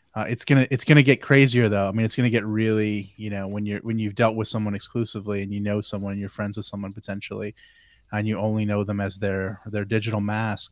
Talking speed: 245 wpm